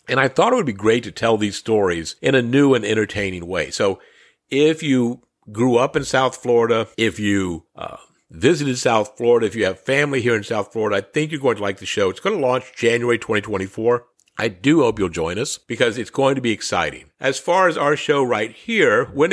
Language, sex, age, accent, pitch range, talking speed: English, male, 50-69, American, 110-145 Hz, 225 wpm